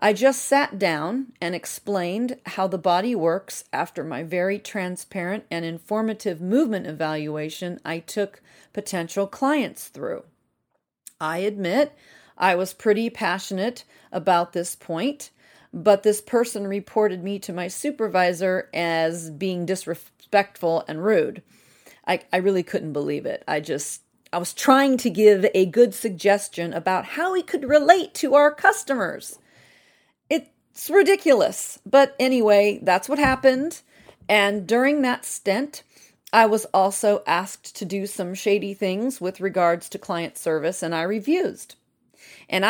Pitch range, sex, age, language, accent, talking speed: 175-240 Hz, female, 40-59, English, American, 140 wpm